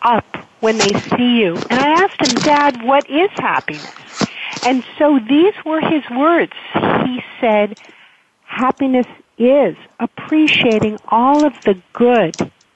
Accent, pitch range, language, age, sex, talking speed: American, 210-275 Hz, English, 50-69, female, 130 wpm